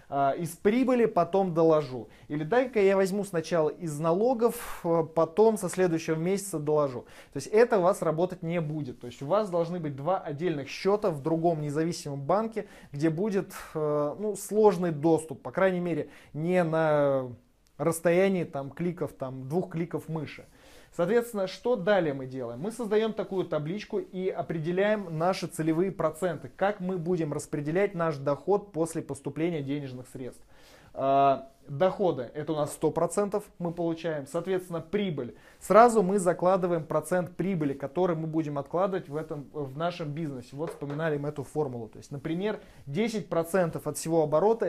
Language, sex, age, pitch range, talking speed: Russian, male, 20-39, 150-190 Hz, 150 wpm